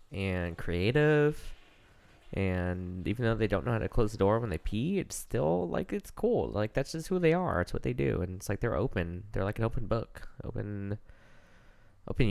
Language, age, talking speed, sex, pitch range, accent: English, 20-39, 210 wpm, male, 95-115 Hz, American